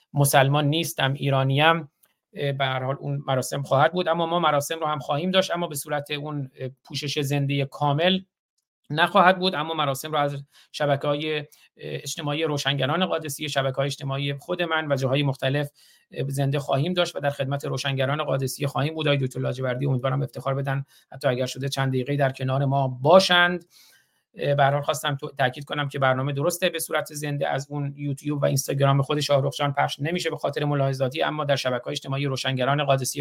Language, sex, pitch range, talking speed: Persian, male, 135-150 Hz, 175 wpm